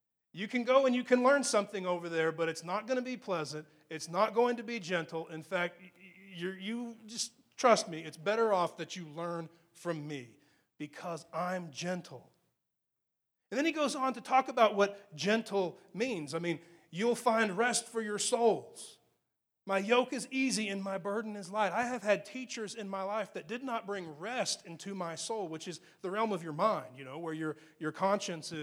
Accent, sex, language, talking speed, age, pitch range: American, male, English, 200 wpm, 30-49, 170-240 Hz